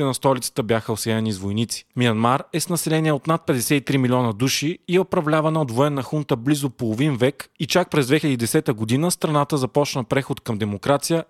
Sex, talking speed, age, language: male, 175 wpm, 20-39, Bulgarian